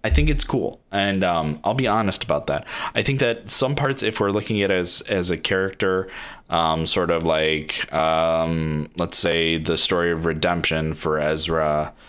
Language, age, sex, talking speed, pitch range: English, 20-39, male, 185 wpm, 75-90 Hz